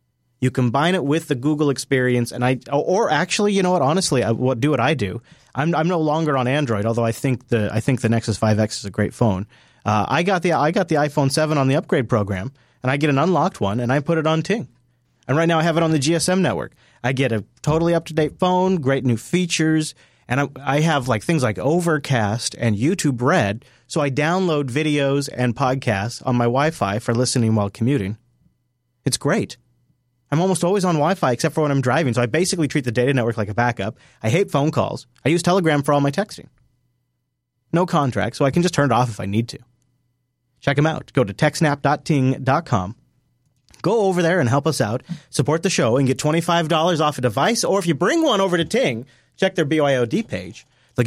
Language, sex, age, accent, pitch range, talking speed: English, male, 40-59, American, 120-160 Hz, 220 wpm